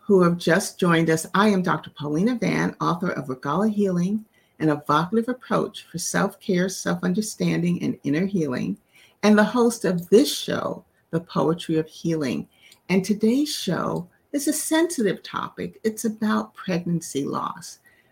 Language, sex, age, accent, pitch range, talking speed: English, female, 50-69, American, 160-215 Hz, 145 wpm